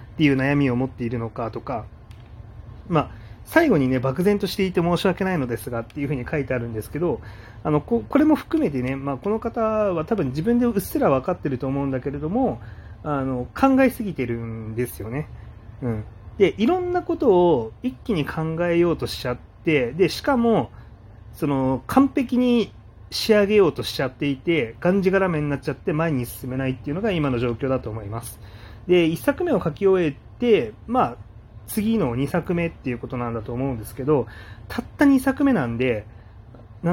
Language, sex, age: Japanese, male, 30-49